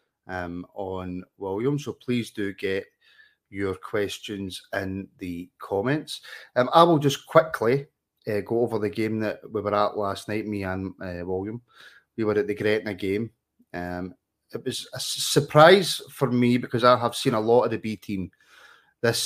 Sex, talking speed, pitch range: male, 180 wpm, 100-135 Hz